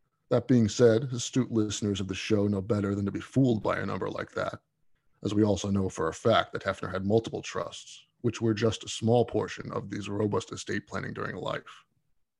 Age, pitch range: 20-39, 105-125 Hz